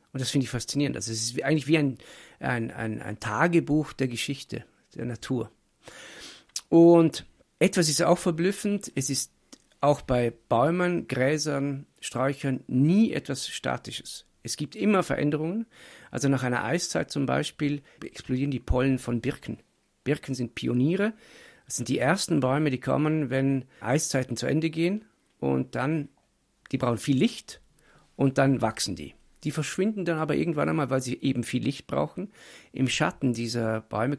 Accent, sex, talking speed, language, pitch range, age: German, male, 160 wpm, German, 115-150 Hz, 50-69